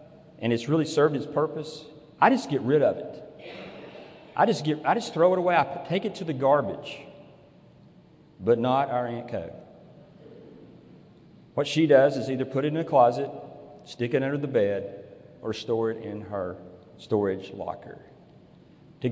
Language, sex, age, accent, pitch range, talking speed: English, male, 40-59, American, 115-155 Hz, 170 wpm